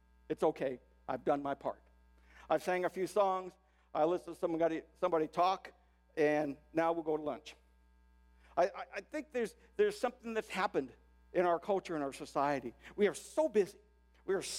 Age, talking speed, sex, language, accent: 60-79, 180 wpm, male, English, American